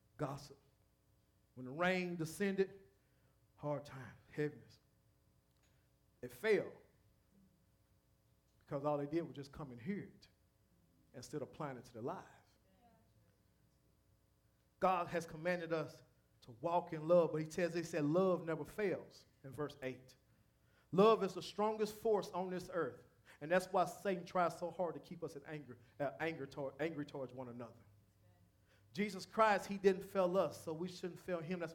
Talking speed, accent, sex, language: 160 wpm, American, male, English